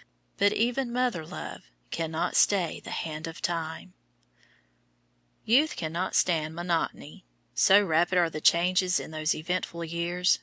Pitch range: 155-195 Hz